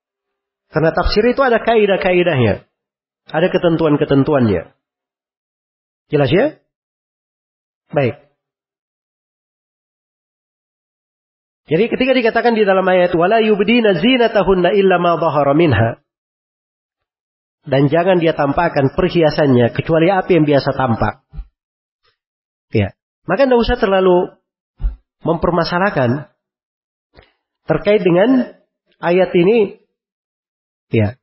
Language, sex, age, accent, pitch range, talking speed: Indonesian, male, 40-59, native, 135-195 Hz, 85 wpm